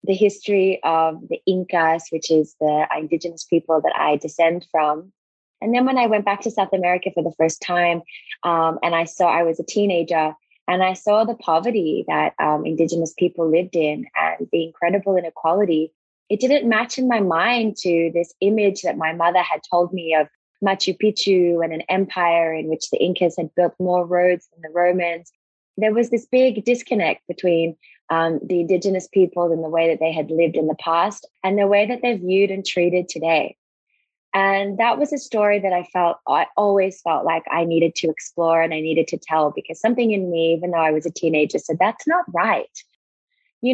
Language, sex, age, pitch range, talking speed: English, female, 20-39, 165-195 Hz, 200 wpm